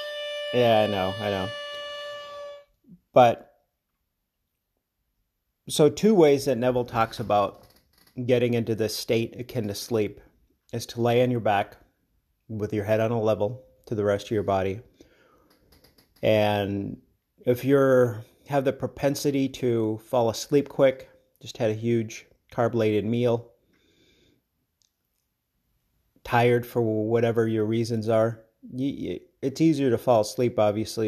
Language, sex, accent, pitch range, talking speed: English, male, American, 105-125 Hz, 130 wpm